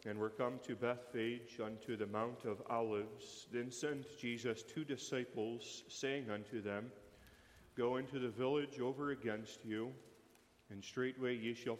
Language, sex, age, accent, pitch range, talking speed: English, male, 40-59, American, 110-125 Hz, 145 wpm